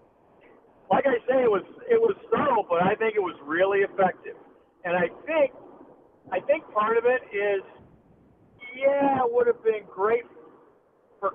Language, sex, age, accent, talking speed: English, male, 50-69, American, 165 wpm